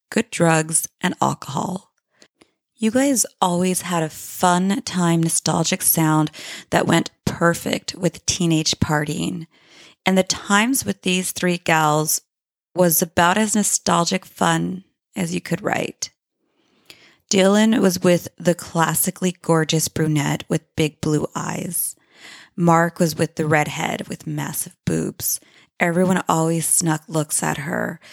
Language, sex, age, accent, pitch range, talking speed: English, female, 20-39, American, 155-185 Hz, 130 wpm